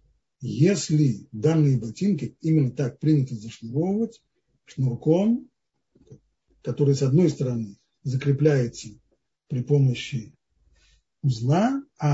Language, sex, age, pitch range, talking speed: Russian, male, 40-59, 130-160 Hz, 85 wpm